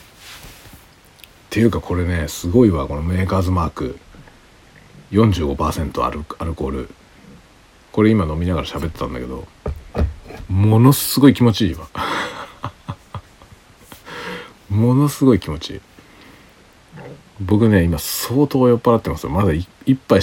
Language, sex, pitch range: Japanese, male, 80-110 Hz